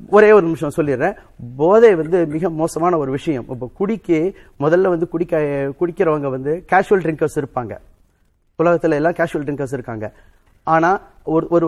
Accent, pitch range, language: native, 145-175 Hz, Tamil